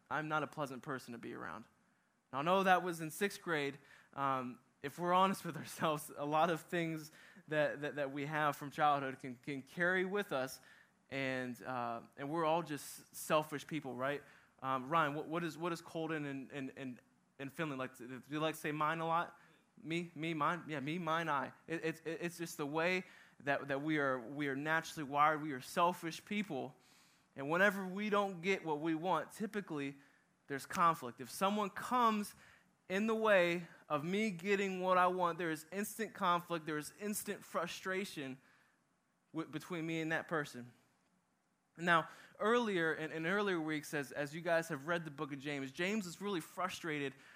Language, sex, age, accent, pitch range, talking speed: English, male, 20-39, American, 140-175 Hz, 190 wpm